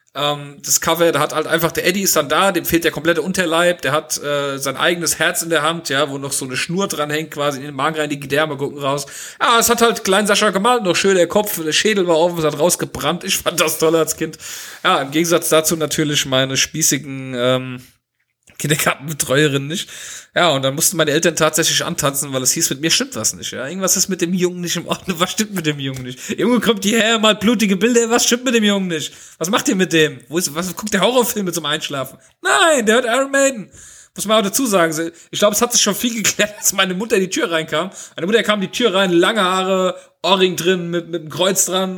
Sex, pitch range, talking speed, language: male, 150-190 Hz, 250 wpm, German